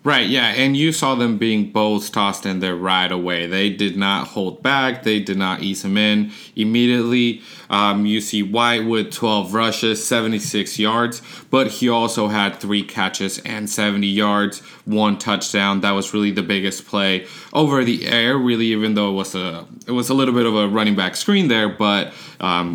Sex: male